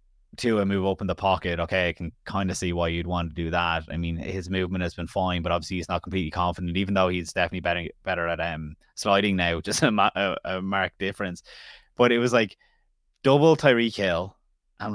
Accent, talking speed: Irish, 225 wpm